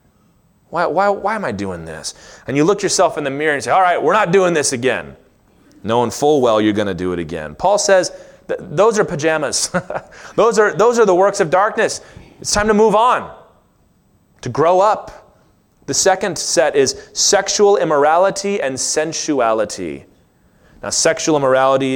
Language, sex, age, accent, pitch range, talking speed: English, male, 30-49, American, 145-205 Hz, 175 wpm